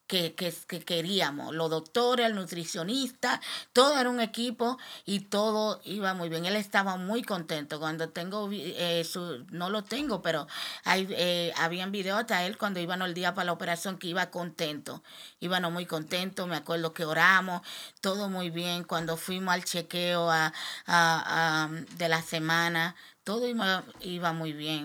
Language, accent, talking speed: Spanish, American, 165 wpm